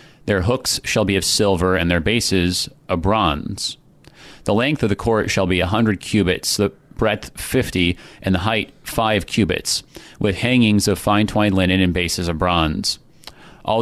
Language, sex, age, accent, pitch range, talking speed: English, male, 30-49, American, 95-120 Hz, 175 wpm